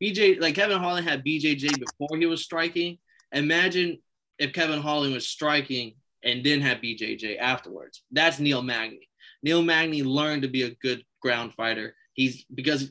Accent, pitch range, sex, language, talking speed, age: American, 125-170 Hz, male, English, 165 wpm, 20-39